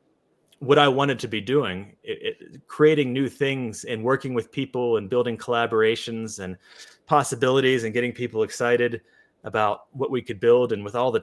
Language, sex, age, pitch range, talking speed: English, male, 30-49, 110-150 Hz, 165 wpm